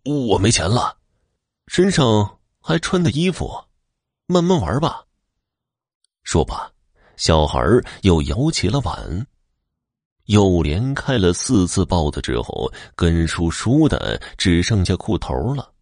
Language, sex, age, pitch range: Chinese, male, 30-49, 85-130 Hz